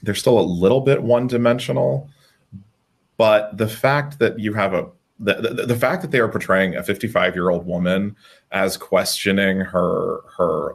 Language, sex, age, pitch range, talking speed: English, male, 30-49, 90-120 Hz, 165 wpm